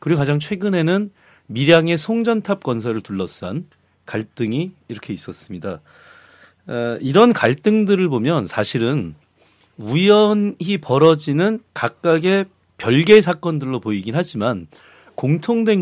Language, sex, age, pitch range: Korean, male, 40-59, 125-200 Hz